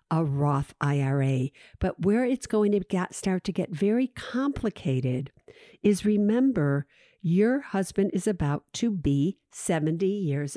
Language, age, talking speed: English, 50-69, 130 wpm